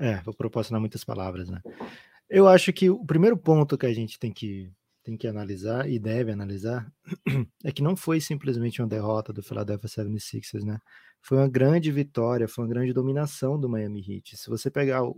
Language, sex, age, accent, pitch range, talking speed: Portuguese, male, 20-39, Brazilian, 115-145 Hz, 185 wpm